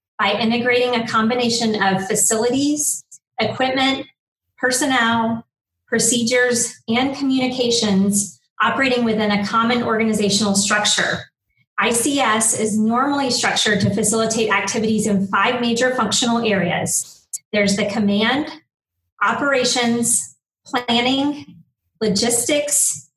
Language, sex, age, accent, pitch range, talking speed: English, female, 30-49, American, 205-245 Hz, 90 wpm